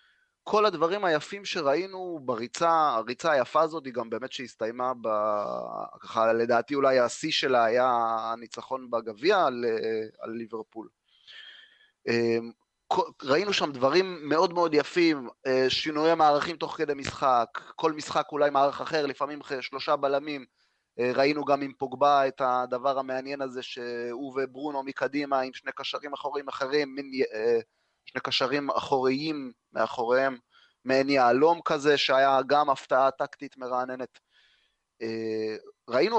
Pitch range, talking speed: 125-165 Hz, 120 wpm